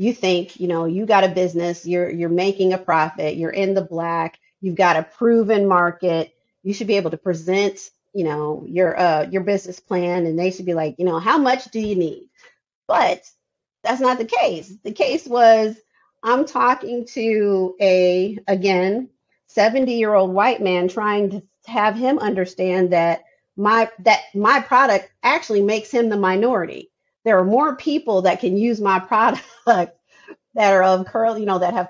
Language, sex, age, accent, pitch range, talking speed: English, female, 40-59, American, 185-230 Hz, 180 wpm